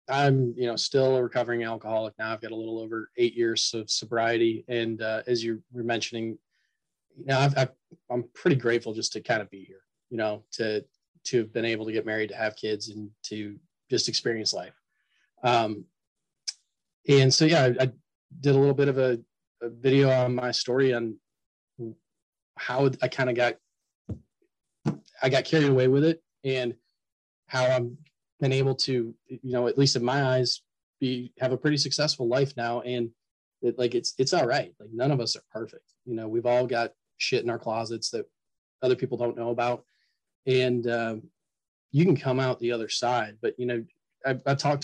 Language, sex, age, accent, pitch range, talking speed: English, male, 30-49, American, 115-135 Hz, 195 wpm